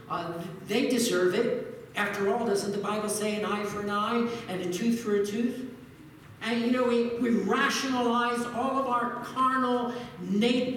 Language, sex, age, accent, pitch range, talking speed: English, male, 60-79, American, 180-245 Hz, 180 wpm